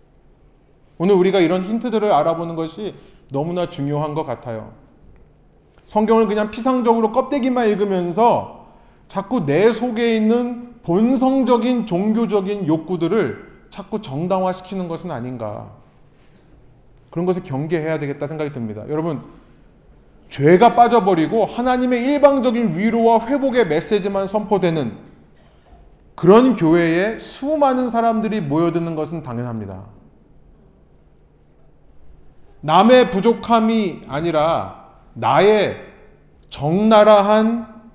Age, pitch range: 30-49, 155-235 Hz